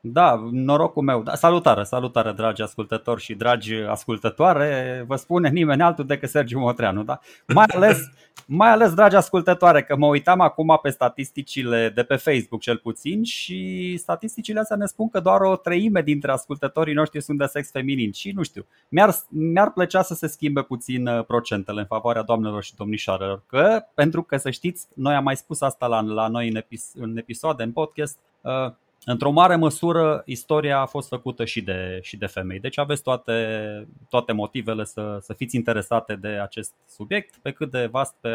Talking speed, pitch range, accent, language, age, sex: 170 wpm, 120-165 Hz, native, Romanian, 20-39, male